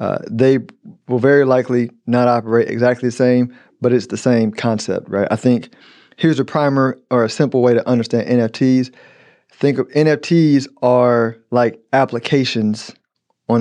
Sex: male